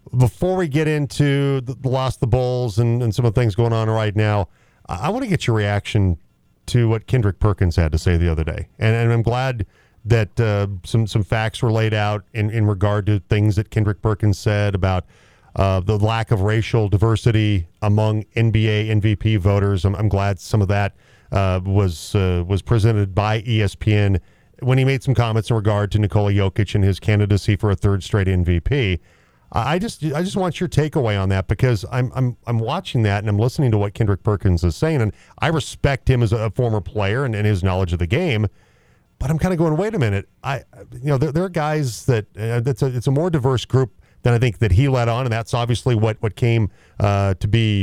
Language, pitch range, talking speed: English, 100-125 Hz, 220 wpm